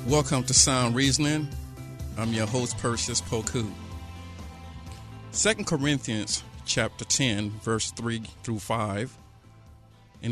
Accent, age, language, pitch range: American, 50-69, English, 110-135 Hz